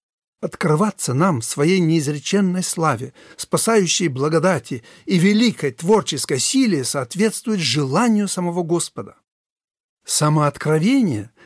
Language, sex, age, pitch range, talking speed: Russian, male, 60-79, 145-185 Hz, 90 wpm